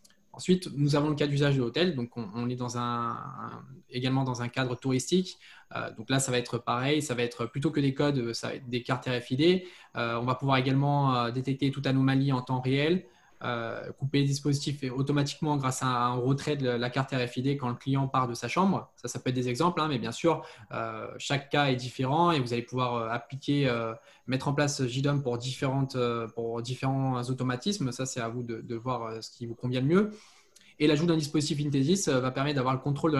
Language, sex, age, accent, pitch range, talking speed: French, male, 20-39, French, 125-150 Hz, 220 wpm